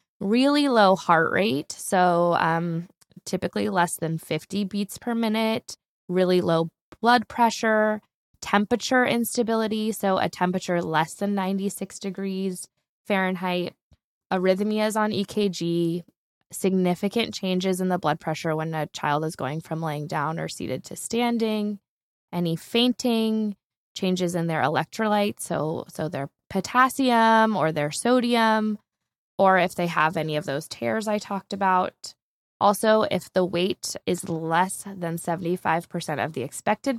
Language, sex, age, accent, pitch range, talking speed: English, female, 10-29, American, 170-220 Hz, 135 wpm